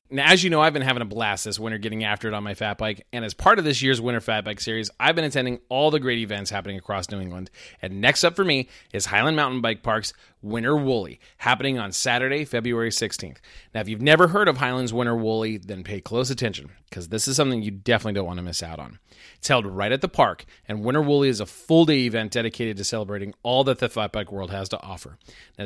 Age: 30-49